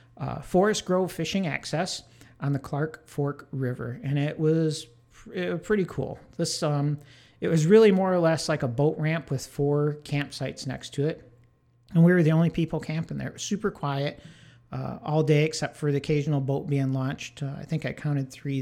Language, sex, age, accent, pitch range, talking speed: English, male, 50-69, American, 135-165 Hz, 205 wpm